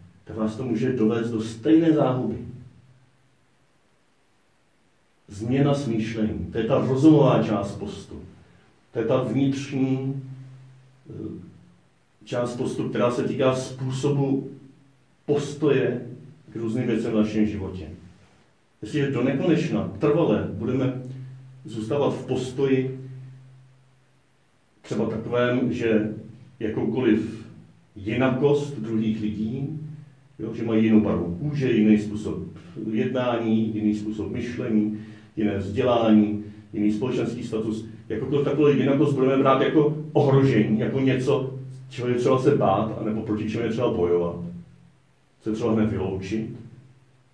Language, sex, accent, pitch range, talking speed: Czech, male, native, 110-130 Hz, 110 wpm